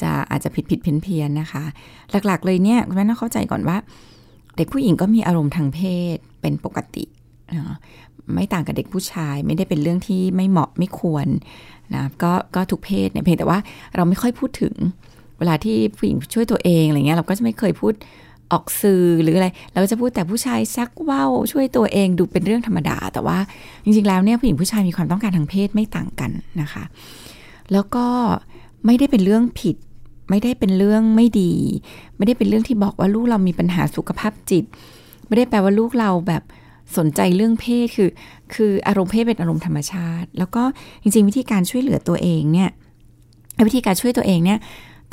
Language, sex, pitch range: Thai, female, 170-220 Hz